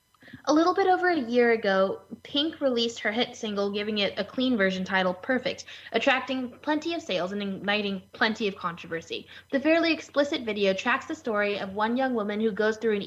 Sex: female